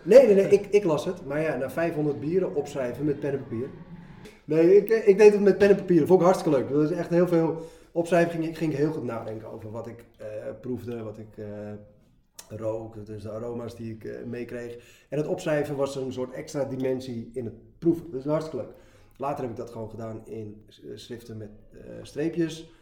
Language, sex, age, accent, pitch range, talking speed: Dutch, male, 20-39, Dutch, 115-150 Hz, 220 wpm